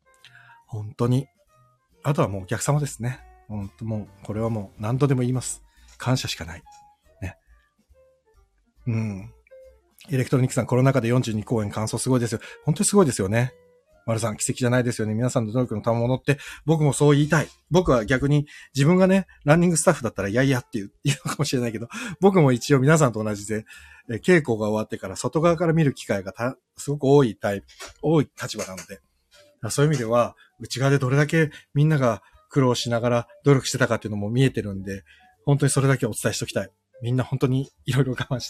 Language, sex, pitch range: Japanese, male, 115-150 Hz